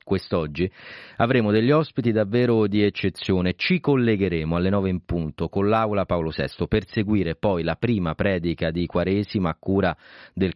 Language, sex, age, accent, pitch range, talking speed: Italian, male, 40-59, native, 90-125 Hz, 160 wpm